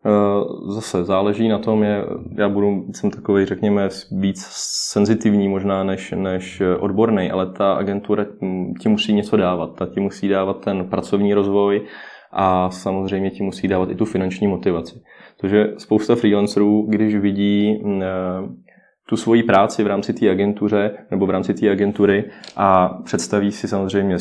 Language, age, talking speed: Czech, 20-39, 145 wpm